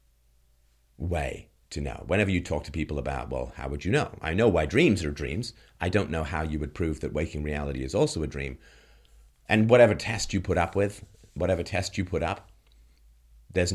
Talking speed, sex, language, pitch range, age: 205 wpm, male, English, 70-100 Hz, 40-59